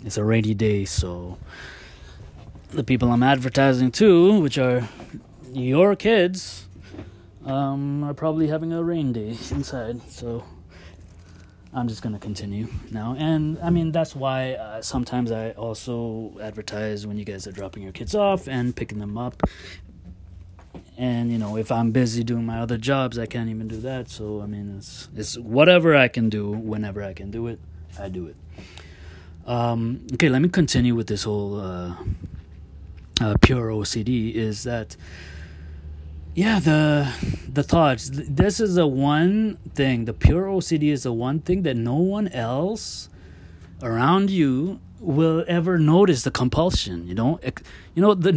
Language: English